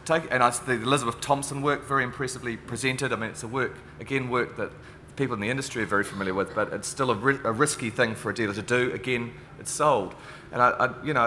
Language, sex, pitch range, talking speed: English, male, 100-125 Hz, 225 wpm